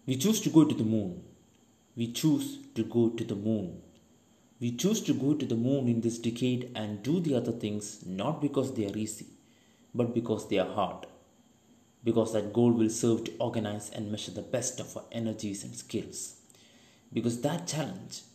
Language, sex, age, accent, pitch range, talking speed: Malayalam, male, 30-49, native, 105-125 Hz, 190 wpm